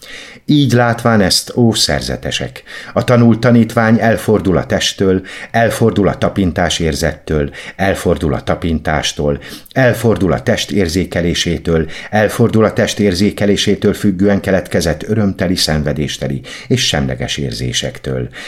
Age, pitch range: 50-69, 75-110 Hz